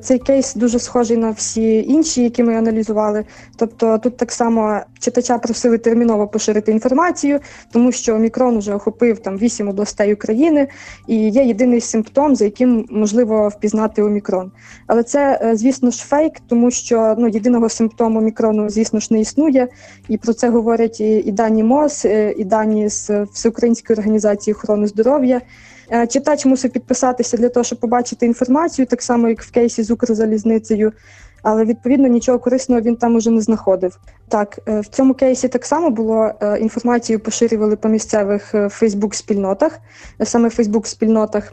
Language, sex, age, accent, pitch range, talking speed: Ukrainian, female, 20-39, native, 215-245 Hz, 155 wpm